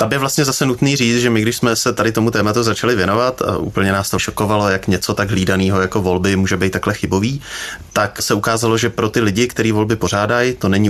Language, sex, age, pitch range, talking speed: Czech, male, 20-39, 95-115 Hz, 240 wpm